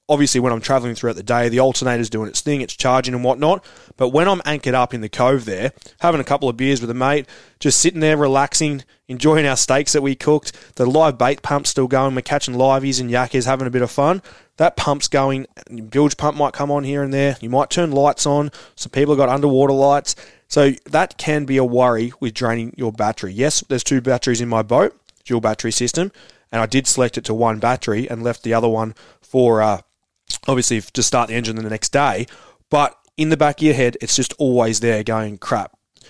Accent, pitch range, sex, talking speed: Australian, 115-140 Hz, male, 230 wpm